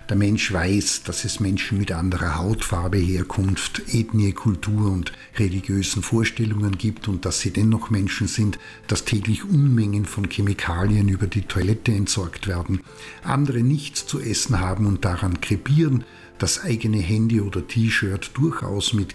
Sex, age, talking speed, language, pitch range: male, 50-69, 145 wpm, German, 100-120 Hz